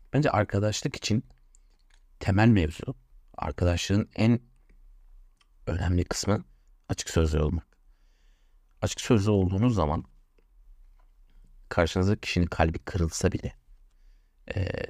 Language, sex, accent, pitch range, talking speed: Turkish, male, native, 75-100 Hz, 90 wpm